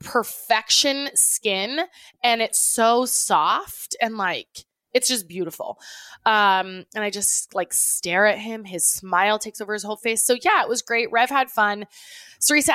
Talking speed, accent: 165 wpm, American